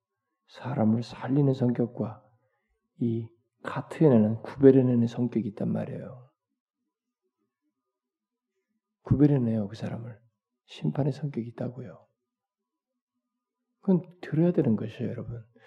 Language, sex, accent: Korean, male, native